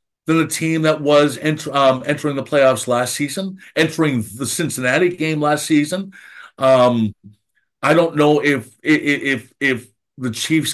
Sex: male